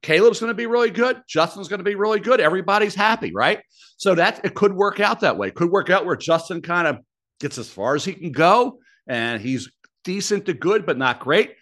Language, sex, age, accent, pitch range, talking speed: English, male, 60-79, American, 150-205 Hz, 240 wpm